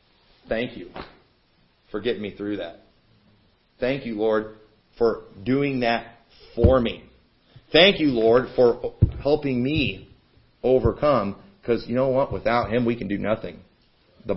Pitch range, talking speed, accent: 115-170 Hz, 140 wpm, American